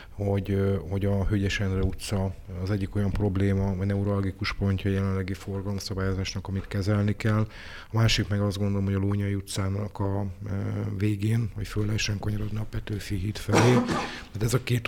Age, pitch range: 30-49, 95-105 Hz